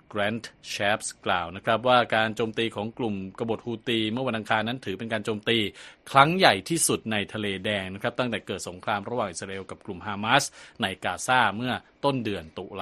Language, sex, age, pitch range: Thai, male, 20-39, 100-120 Hz